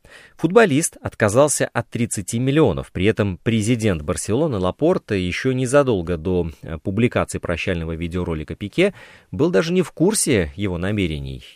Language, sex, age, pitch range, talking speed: Russian, male, 30-49, 90-135 Hz, 125 wpm